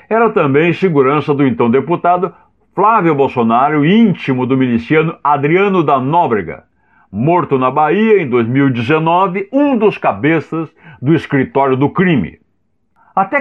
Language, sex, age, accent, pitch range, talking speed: Portuguese, male, 60-79, Brazilian, 130-205 Hz, 120 wpm